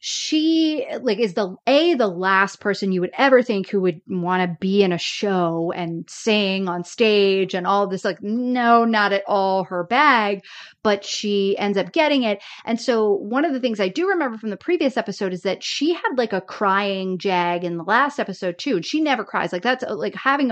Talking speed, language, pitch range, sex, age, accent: 215 wpm, English, 185-235 Hz, female, 30-49, American